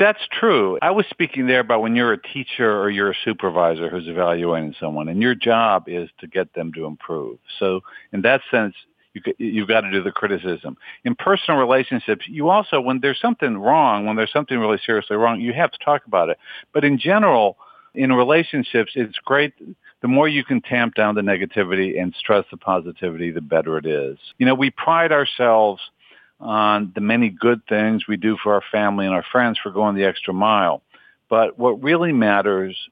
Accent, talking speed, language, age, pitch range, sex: American, 195 wpm, English, 50-69, 95-130 Hz, male